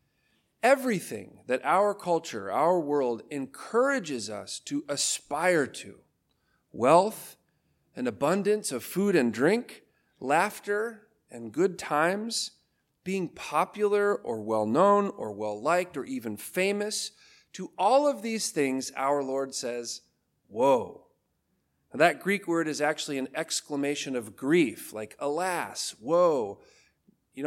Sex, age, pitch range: male, 40-59, 135-220 Hz